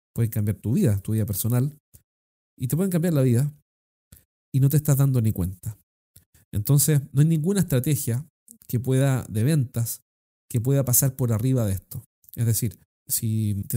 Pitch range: 105-135 Hz